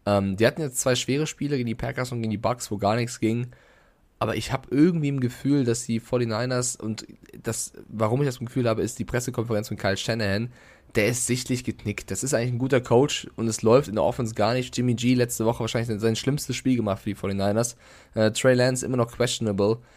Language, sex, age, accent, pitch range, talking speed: German, male, 20-39, German, 110-125 Hz, 230 wpm